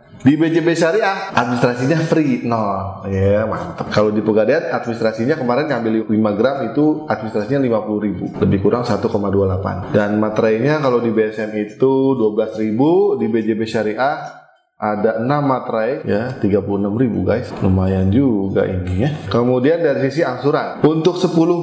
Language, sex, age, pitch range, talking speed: Indonesian, male, 20-39, 105-135 Hz, 145 wpm